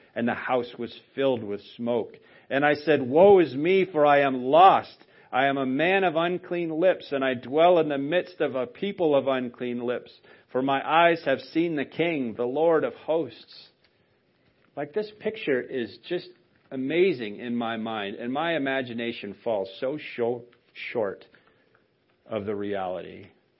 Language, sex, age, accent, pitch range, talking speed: English, male, 40-59, American, 125-175 Hz, 165 wpm